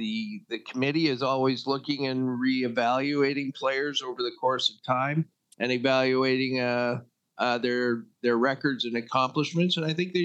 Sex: male